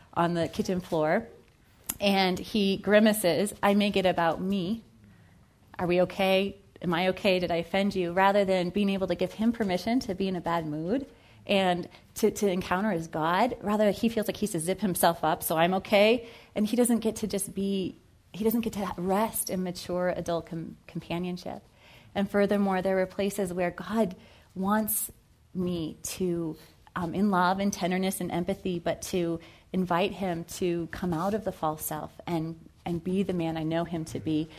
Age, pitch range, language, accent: 30-49, 165-195 Hz, English, American